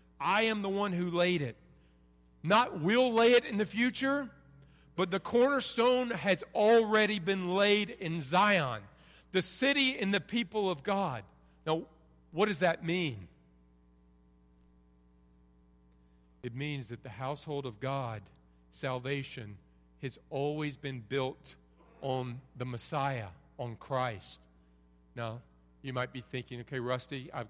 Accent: American